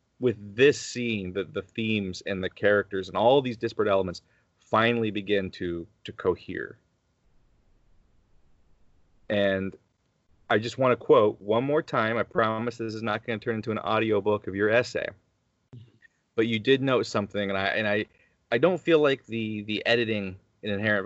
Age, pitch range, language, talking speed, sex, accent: 30-49, 95-115 Hz, English, 175 wpm, male, American